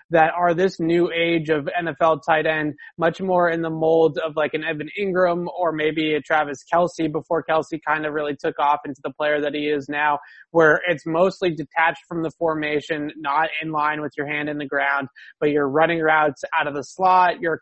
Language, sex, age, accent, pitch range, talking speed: English, male, 20-39, American, 150-170 Hz, 215 wpm